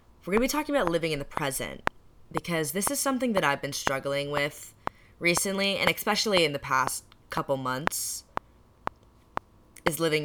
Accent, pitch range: American, 130-180 Hz